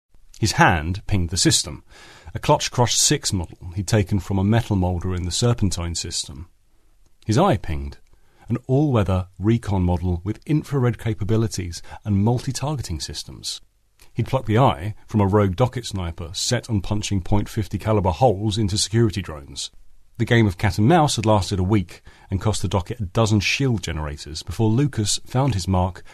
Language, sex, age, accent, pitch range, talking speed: English, male, 40-59, British, 90-115 Hz, 170 wpm